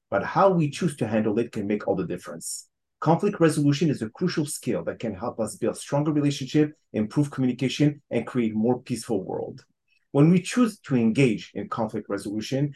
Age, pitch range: 40-59, 115-155 Hz